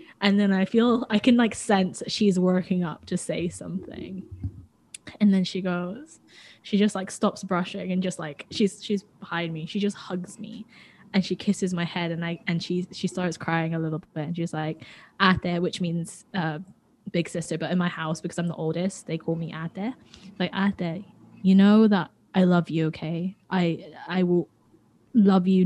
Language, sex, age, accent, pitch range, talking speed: English, female, 10-29, British, 170-200 Hz, 195 wpm